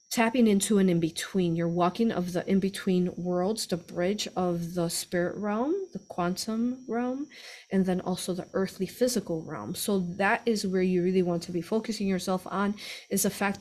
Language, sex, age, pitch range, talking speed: English, female, 30-49, 180-215 Hz, 190 wpm